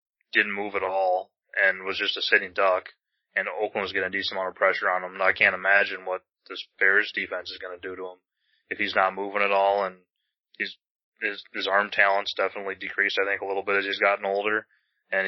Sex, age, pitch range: male, 20-39, 95-100 Hz